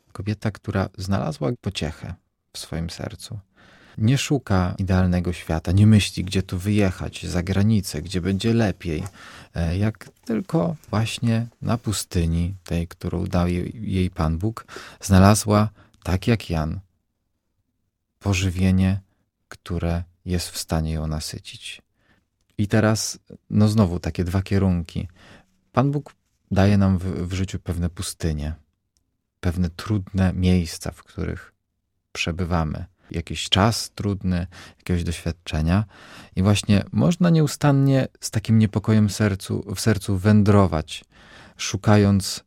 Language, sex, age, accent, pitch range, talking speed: Polish, male, 40-59, native, 90-105 Hz, 115 wpm